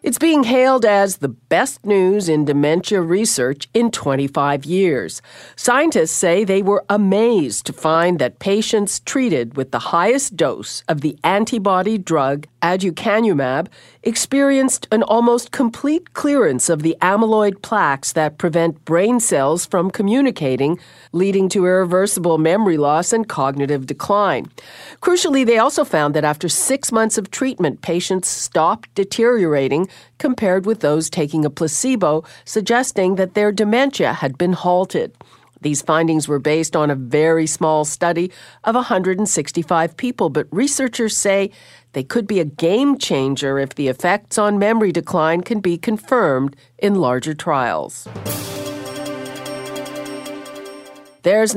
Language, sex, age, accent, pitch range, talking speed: English, female, 50-69, American, 155-220 Hz, 135 wpm